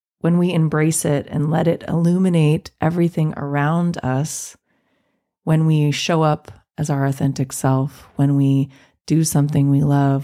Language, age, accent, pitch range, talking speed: English, 30-49, American, 140-165 Hz, 145 wpm